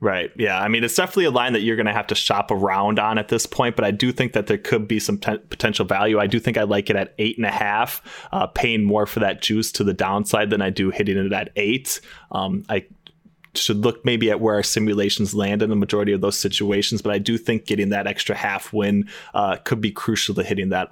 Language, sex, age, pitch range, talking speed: English, male, 20-39, 105-120 Hz, 260 wpm